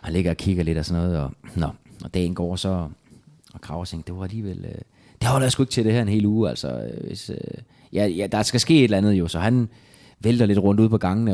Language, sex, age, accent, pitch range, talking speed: Danish, male, 20-39, native, 110-150 Hz, 260 wpm